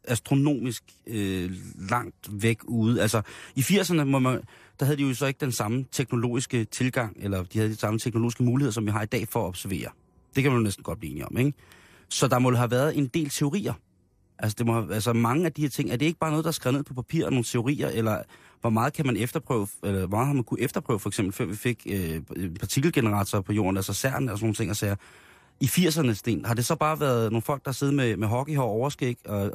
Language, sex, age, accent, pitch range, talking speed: Danish, male, 30-49, native, 110-135 Hz, 250 wpm